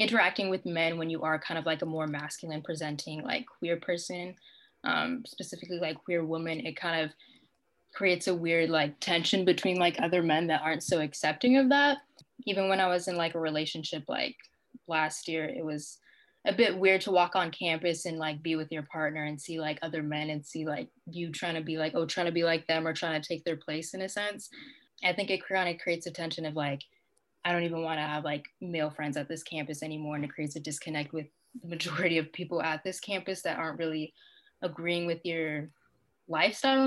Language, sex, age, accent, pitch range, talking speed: English, female, 20-39, American, 155-190 Hz, 220 wpm